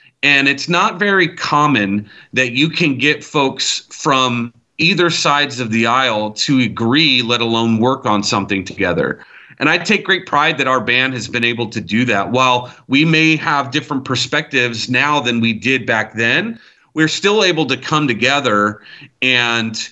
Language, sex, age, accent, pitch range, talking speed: English, male, 30-49, American, 115-145 Hz, 170 wpm